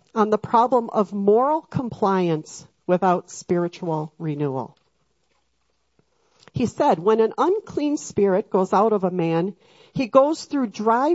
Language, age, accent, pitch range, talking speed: English, 40-59, American, 175-245 Hz, 130 wpm